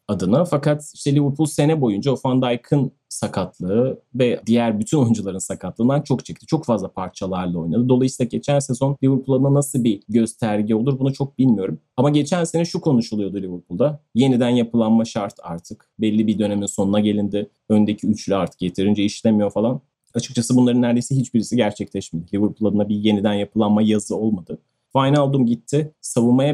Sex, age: male, 30-49